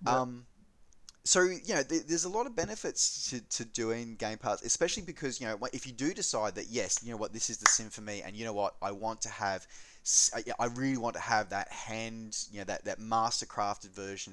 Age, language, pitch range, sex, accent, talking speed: 20-39, English, 95-115 Hz, male, Australian, 225 wpm